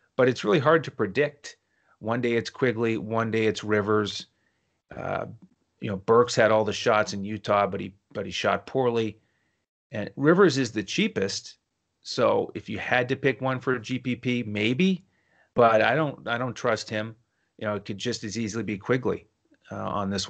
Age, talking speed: 30-49, 190 wpm